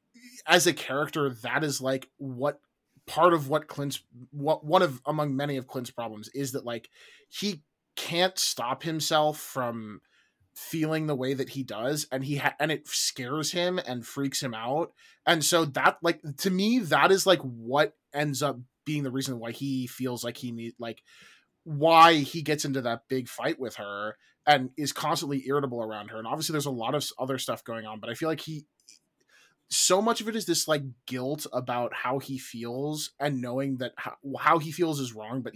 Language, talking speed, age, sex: English, 200 wpm, 20-39, male